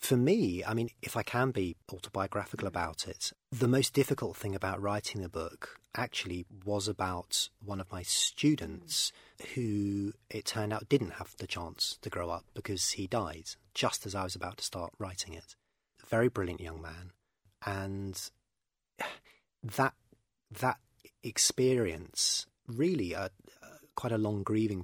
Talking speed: 155 wpm